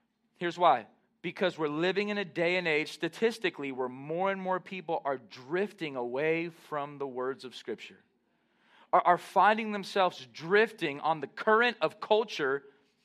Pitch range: 165-225 Hz